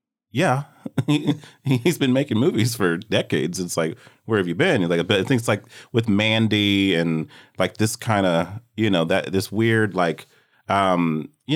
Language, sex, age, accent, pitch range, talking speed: English, male, 30-49, American, 80-110 Hz, 180 wpm